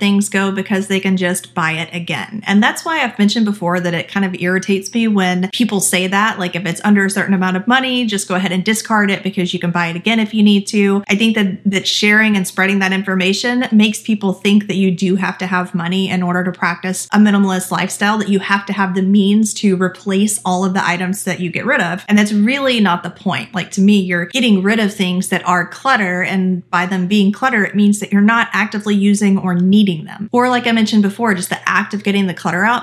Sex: female